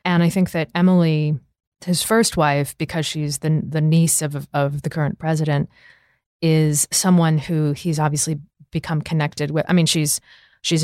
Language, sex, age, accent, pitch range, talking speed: English, female, 20-39, American, 150-170 Hz, 165 wpm